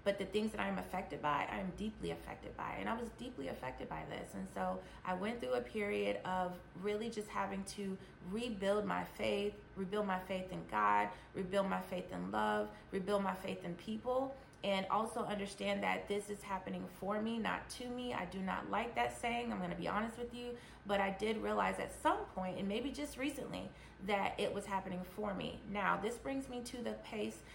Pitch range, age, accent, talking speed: 180-230 Hz, 30-49, American, 210 wpm